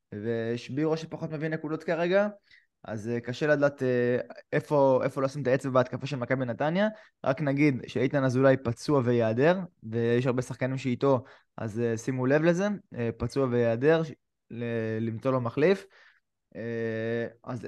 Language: Hebrew